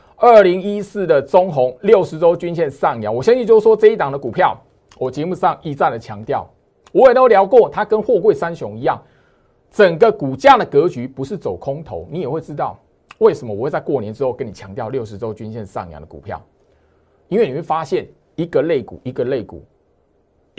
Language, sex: Chinese, male